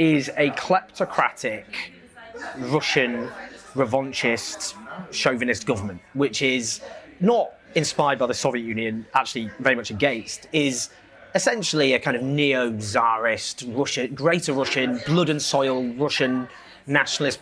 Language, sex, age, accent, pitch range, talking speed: English, male, 30-49, British, 125-160 Hz, 115 wpm